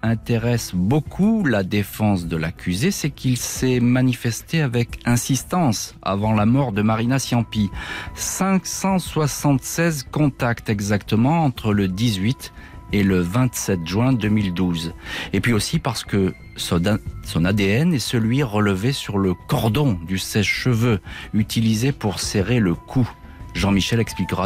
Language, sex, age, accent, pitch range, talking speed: French, male, 40-59, French, 95-120 Hz, 125 wpm